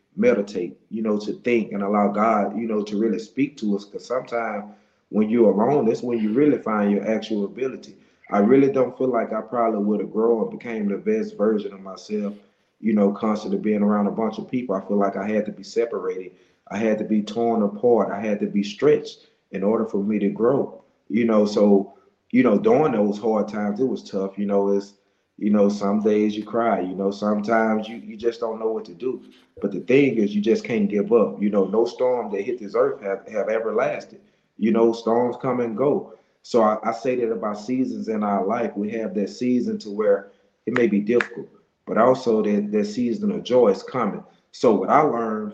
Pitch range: 105-120 Hz